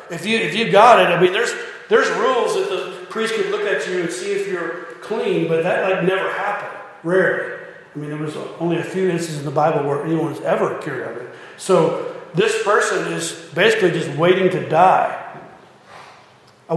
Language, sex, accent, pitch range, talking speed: English, male, American, 185-245 Hz, 205 wpm